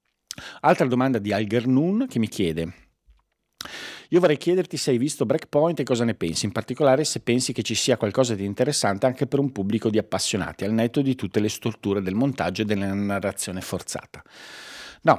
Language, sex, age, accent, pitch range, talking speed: Italian, male, 40-59, native, 95-125 Hz, 190 wpm